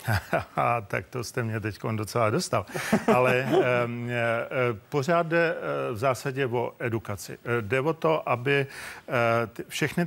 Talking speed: 120 wpm